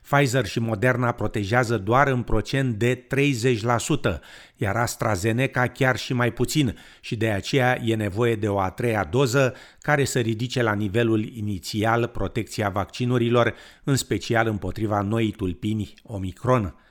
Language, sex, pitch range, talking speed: Romanian, male, 95-120 Hz, 140 wpm